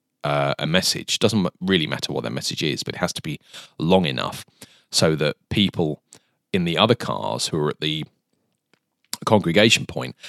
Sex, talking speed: male, 175 wpm